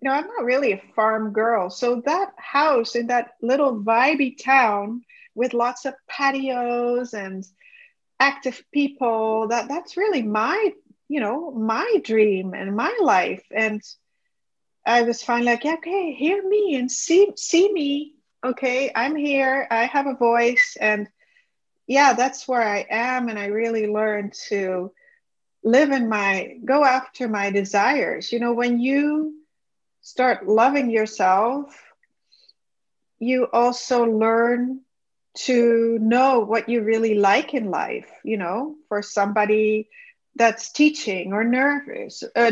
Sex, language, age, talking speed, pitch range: female, English, 40-59, 140 wpm, 215-270 Hz